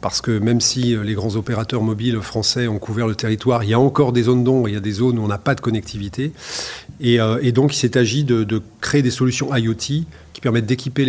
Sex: male